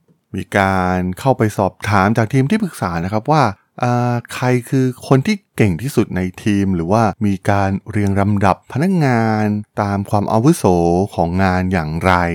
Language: Thai